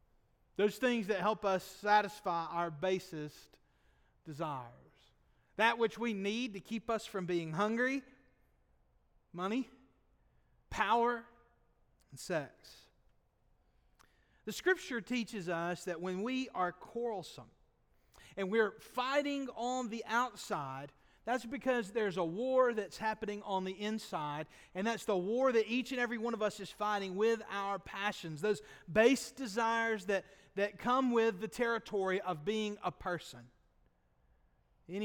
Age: 40-59